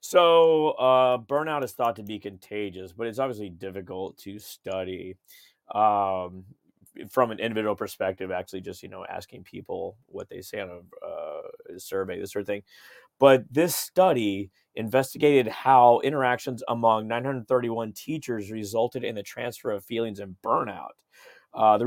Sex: male